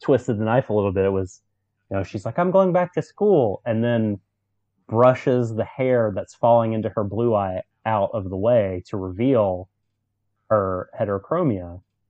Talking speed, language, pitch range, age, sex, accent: 180 wpm, English, 100-120 Hz, 30-49, male, American